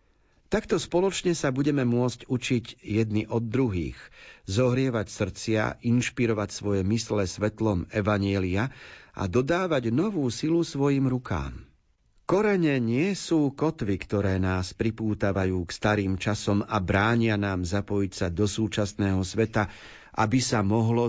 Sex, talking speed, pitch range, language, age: male, 120 wpm, 100-125 Hz, Slovak, 40-59